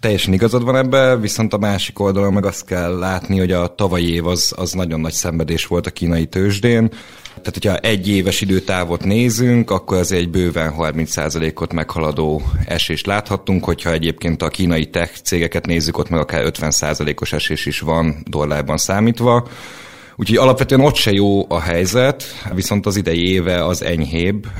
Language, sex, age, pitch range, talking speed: Hungarian, male, 30-49, 85-100 Hz, 165 wpm